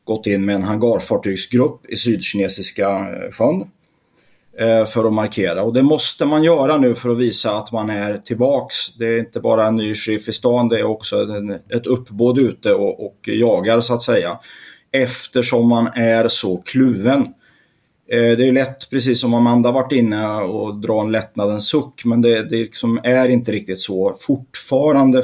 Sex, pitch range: male, 105-125 Hz